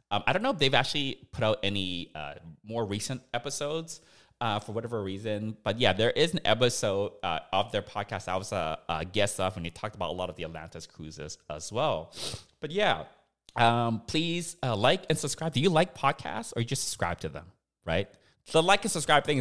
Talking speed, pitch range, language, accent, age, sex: 215 wpm, 100-135 Hz, English, American, 30-49, male